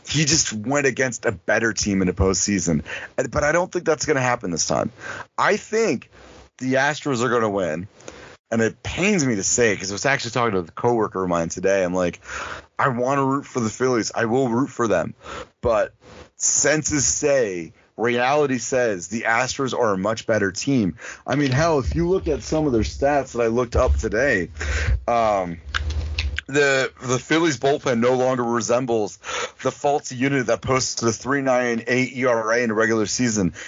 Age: 30-49